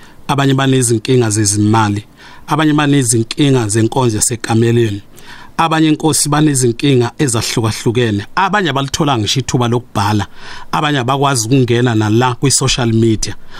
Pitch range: 115-150 Hz